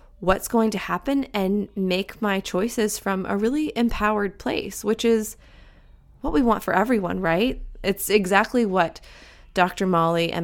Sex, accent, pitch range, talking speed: female, American, 175-215 Hz, 155 wpm